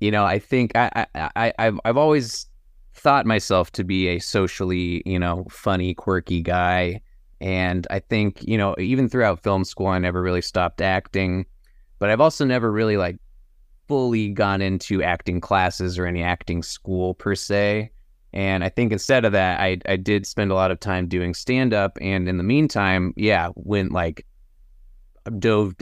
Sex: male